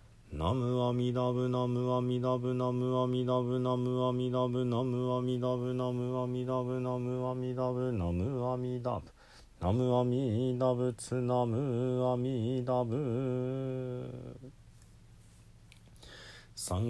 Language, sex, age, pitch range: Japanese, male, 40-59, 120-125 Hz